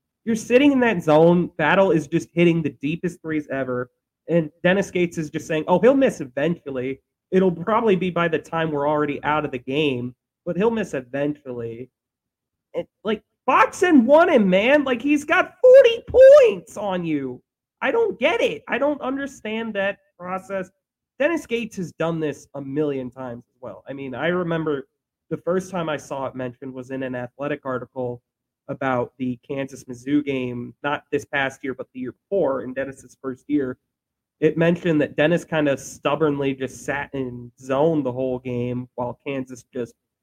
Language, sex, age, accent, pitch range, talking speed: English, male, 30-49, American, 135-195 Hz, 180 wpm